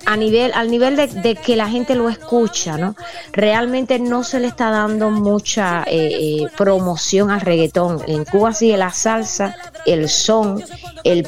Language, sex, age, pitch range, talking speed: Spanish, female, 20-39, 165-225 Hz, 165 wpm